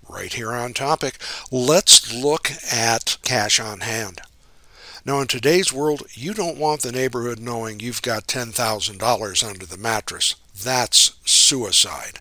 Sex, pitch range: male, 115-150 Hz